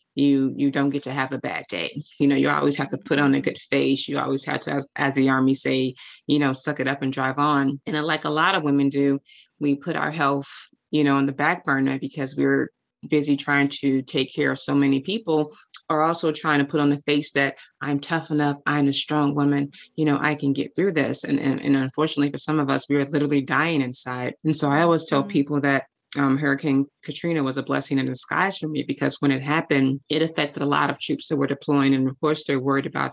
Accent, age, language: American, 20-39, English